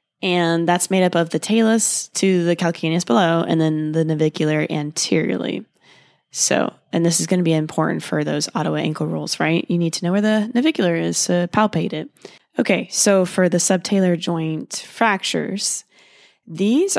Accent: American